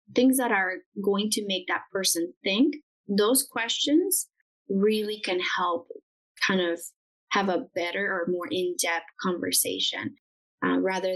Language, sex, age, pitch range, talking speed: English, female, 20-39, 180-230 Hz, 135 wpm